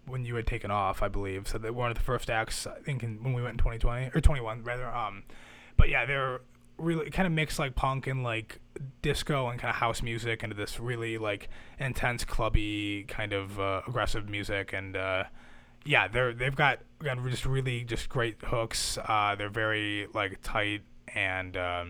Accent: American